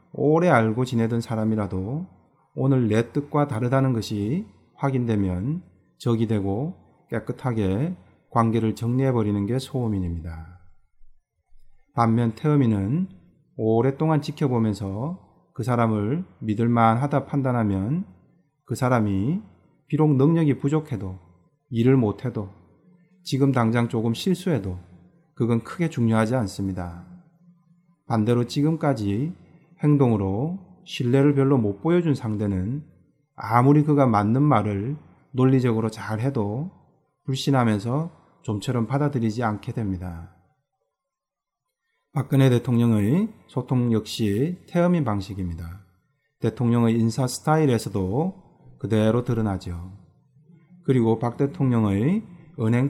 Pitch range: 110-150 Hz